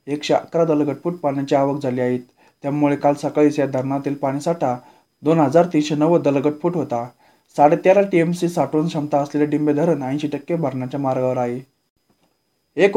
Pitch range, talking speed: 140-160 Hz, 140 wpm